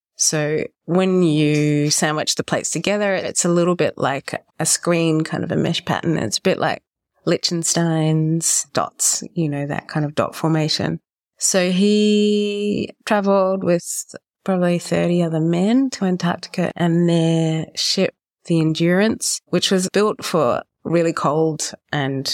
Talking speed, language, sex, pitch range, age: 145 wpm, English, female, 150-180 Hz, 30-49